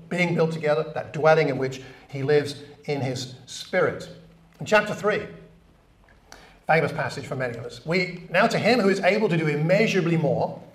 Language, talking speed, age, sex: English, 180 wpm, 50-69, male